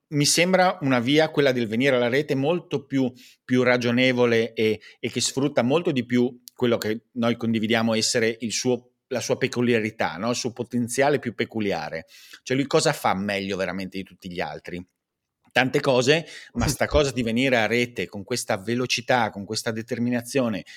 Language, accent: Italian, native